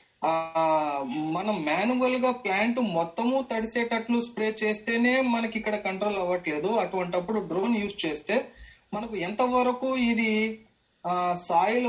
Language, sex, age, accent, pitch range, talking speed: Telugu, male, 30-49, native, 185-235 Hz, 100 wpm